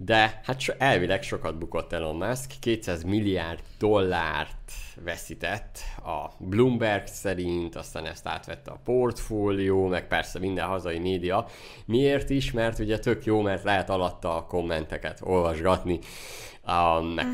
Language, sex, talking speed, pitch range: Hungarian, male, 130 wpm, 85-105 Hz